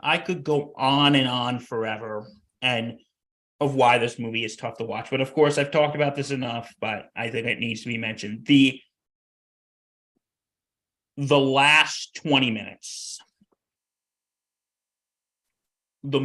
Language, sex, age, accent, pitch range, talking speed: English, male, 30-49, American, 110-140 Hz, 140 wpm